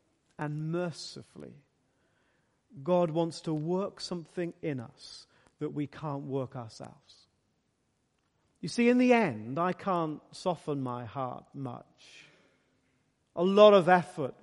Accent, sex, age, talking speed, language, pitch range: British, male, 40-59, 120 wpm, English, 150-215 Hz